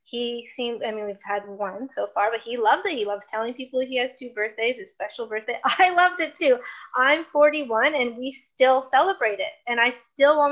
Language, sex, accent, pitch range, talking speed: English, female, American, 210-280 Hz, 220 wpm